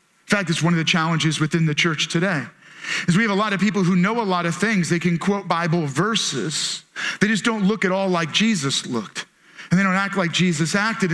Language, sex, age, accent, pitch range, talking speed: English, male, 40-59, American, 185-240 Hz, 245 wpm